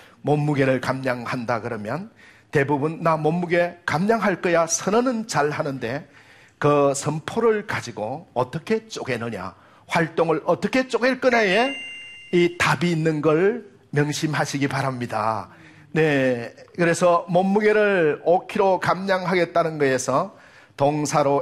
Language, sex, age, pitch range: Korean, male, 40-59, 140-185 Hz